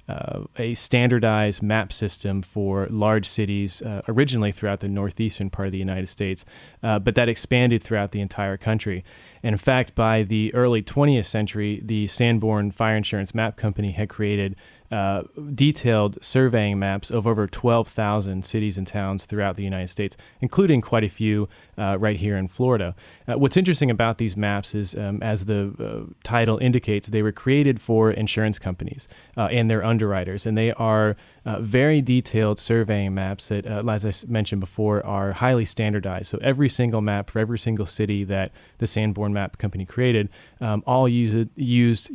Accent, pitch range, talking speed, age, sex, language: American, 100-115 Hz, 175 wpm, 30-49, male, English